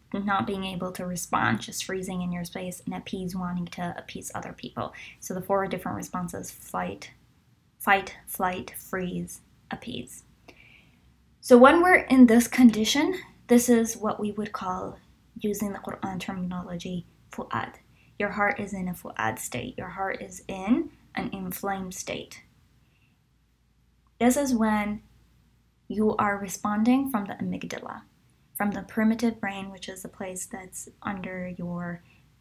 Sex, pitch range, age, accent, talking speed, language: female, 190-235 Hz, 10-29, American, 145 wpm, English